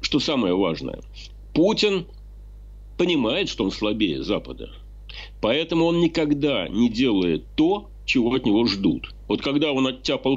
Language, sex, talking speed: Ukrainian, male, 135 wpm